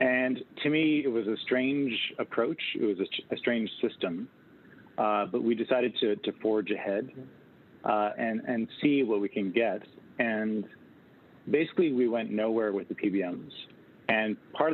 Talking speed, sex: 165 wpm, male